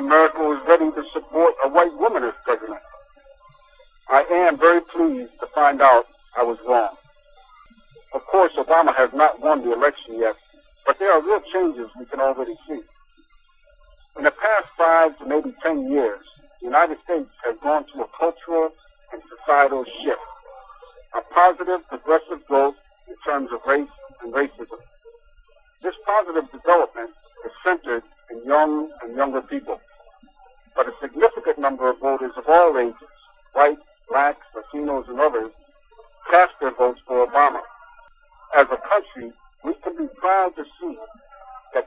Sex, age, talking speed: male, 60-79, 150 wpm